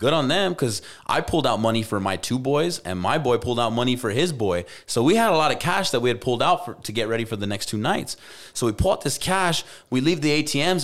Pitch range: 100-135 Hz